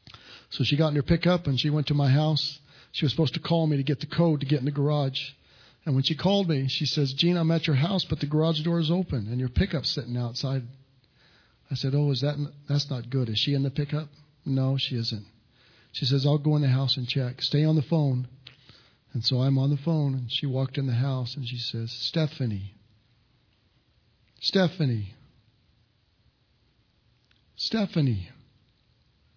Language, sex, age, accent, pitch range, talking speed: English, male, 50-69, American, 120-145 Hz, 200 wpm